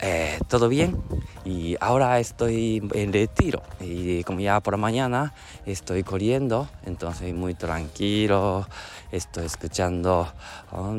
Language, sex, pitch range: Japanese, male, 90-125 Hz